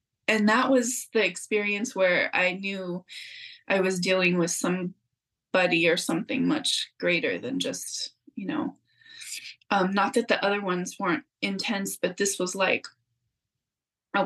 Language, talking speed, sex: English, 145 wpm, female